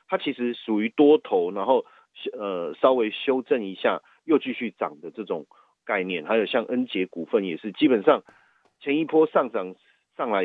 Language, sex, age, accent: Chinese, male, 30-49, native